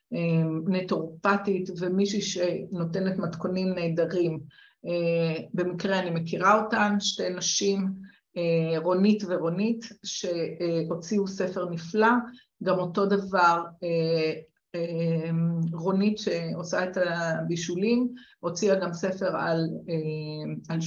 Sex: female